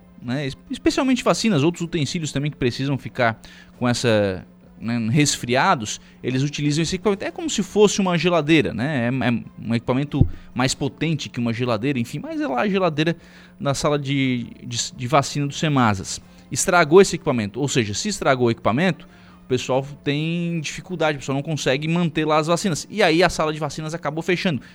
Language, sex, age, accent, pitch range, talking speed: Portuguese, male, 20-39, Brazilian, 120-170 Hz, 185 wpm